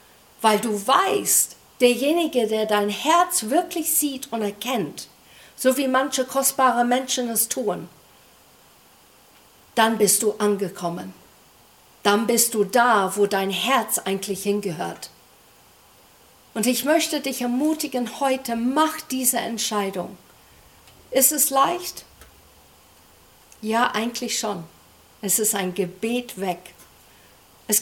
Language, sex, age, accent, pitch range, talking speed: German, female, 50-69, German, 210-315 Hz, 110 wpm